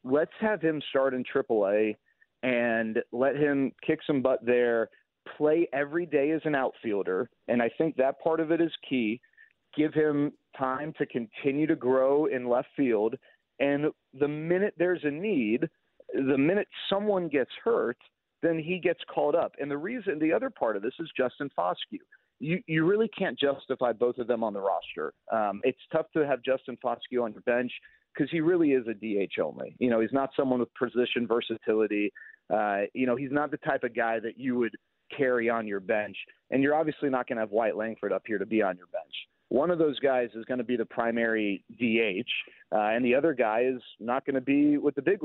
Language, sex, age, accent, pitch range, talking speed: English, male, 40-59, American, 120-155 Hz, 210 wpm